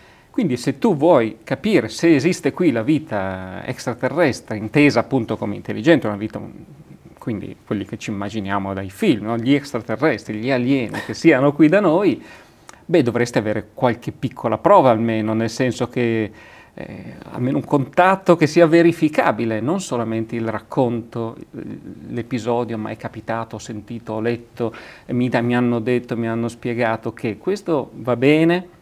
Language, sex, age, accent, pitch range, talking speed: Italian, male, 40-59, native, 110-140 Hz, 155 wpm